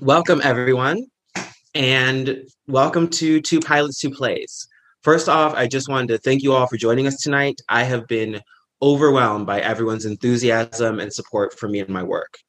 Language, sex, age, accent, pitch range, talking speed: English, male, 20-39, American, 105-130 Hz, 175 wpm